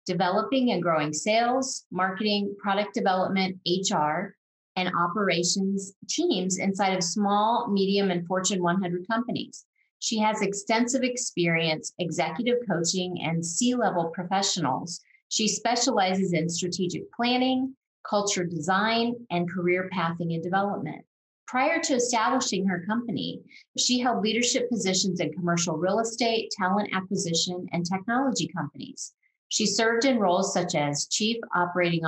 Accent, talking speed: American, 125 wpm